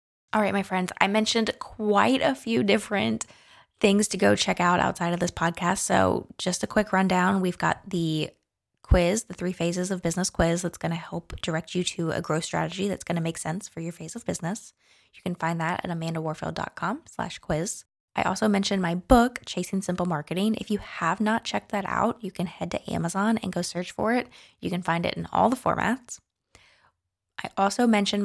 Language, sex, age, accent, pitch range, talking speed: English, female, 20-39, American, 170-210 Hz, 205 wpm